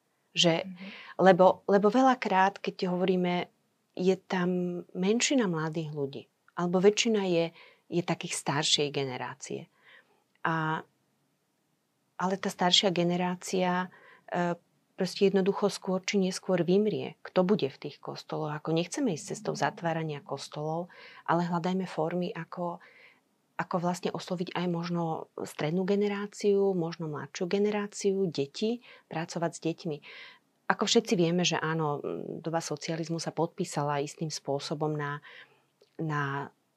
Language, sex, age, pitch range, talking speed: Slovak, female, 30-49, 150-190 Hz, 115 wpm